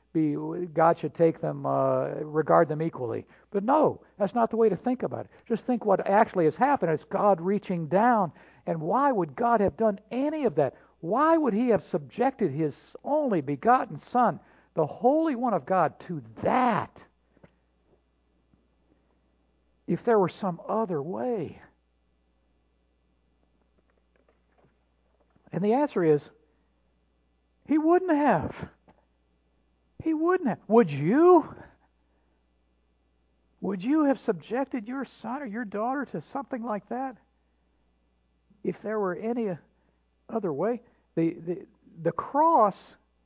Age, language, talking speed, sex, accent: 60-79, English, 130 wpm, male, American